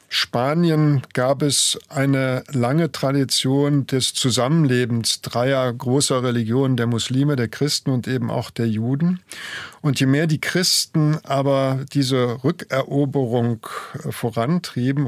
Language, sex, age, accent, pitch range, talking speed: German, male, 50-69, German, 120-145 Hz, 115 wpm